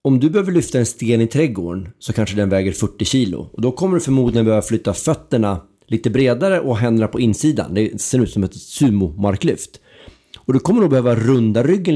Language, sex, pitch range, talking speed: Swedish, male, 100-130 Hz, 205 wpm